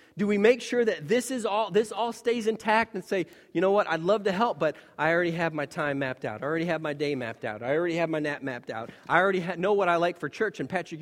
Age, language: 30-49, English